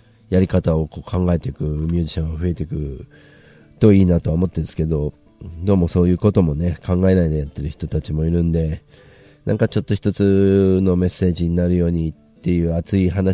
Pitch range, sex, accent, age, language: 80-95 Hz, male, native, 40-59, Japanese